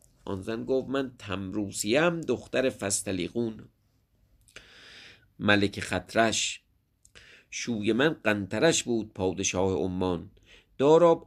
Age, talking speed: 50-69, 85 wpm